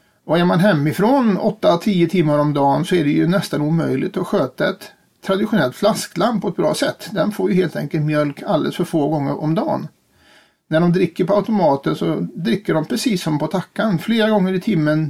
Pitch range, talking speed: 155-205 Hz, 200 wpm